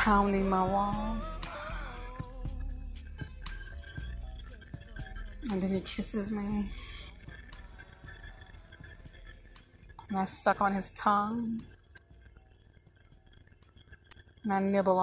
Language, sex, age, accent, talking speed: English, female, 30-49, American, 70 wpm